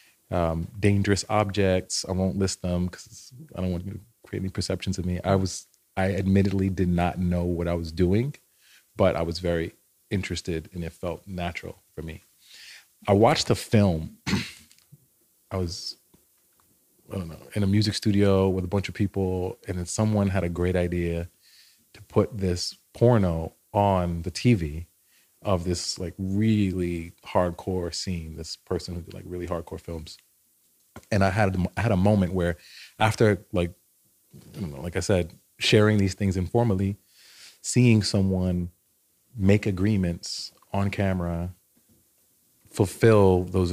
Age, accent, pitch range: 30-49, American, 90-100 Hz